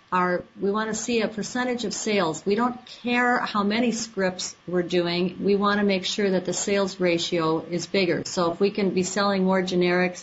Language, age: English, 40-59